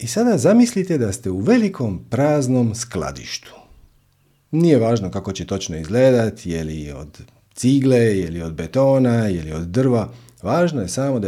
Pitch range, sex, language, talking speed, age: 95-145 Hz, male, Croatian, 150 wpm, 40-59